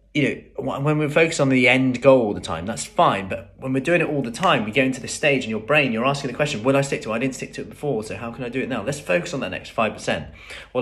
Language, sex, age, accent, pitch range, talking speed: English, male, 30-49, British, 100-145 Hz, 325 wpm